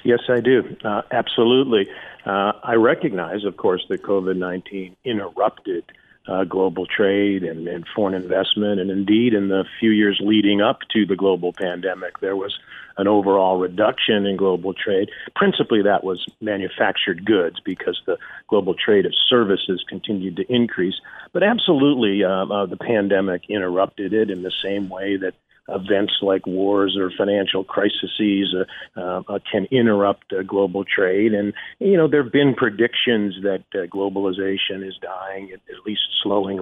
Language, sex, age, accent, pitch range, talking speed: English, male, 50-69, American, 95-110 Hz, 155 wpm